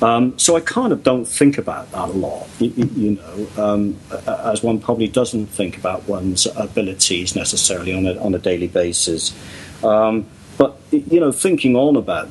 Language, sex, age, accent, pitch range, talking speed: English, male, 50-69, British, 100-120 Hz, 180 wpm